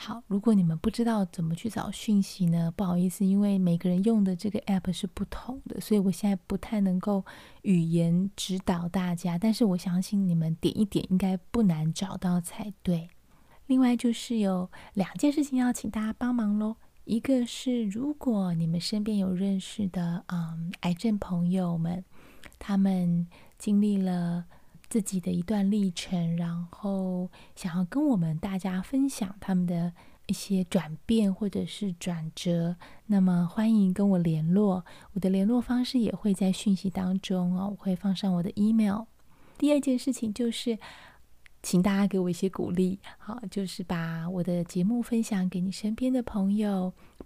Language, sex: Chinese, female